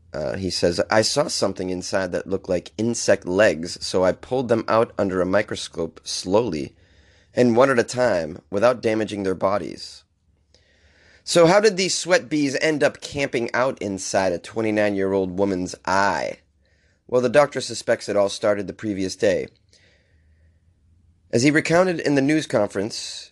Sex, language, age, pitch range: male, English, 30-49, 90-140 Hz